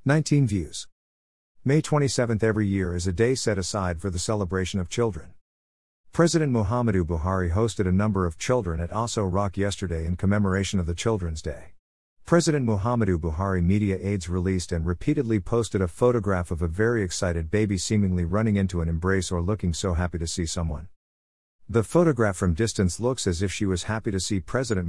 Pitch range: 85-115 Hz